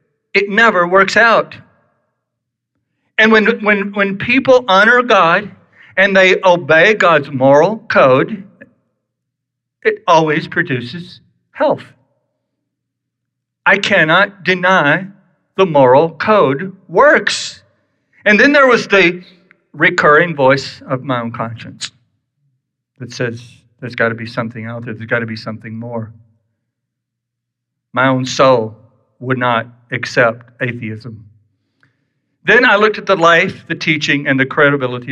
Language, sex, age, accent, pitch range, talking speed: English, male, 60-79, American, 120-165 Hz, 125 wpm